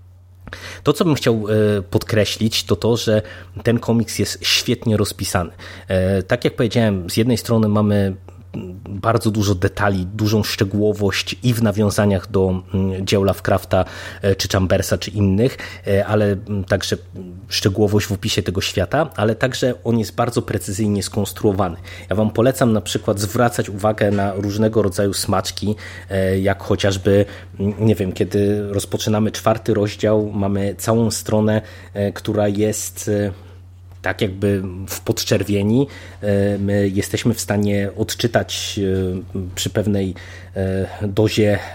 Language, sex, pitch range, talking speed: Polish, male, 95-110 Hz, 120 wpm